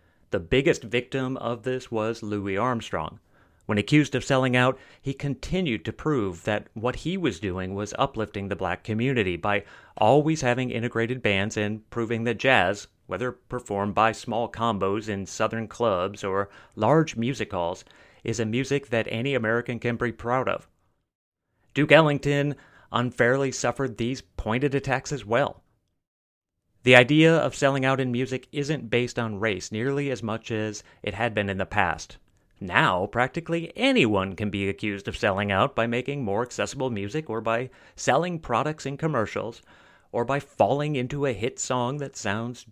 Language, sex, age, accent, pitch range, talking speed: English, male, 30-49, American, 105-130 Hz, 165 wpm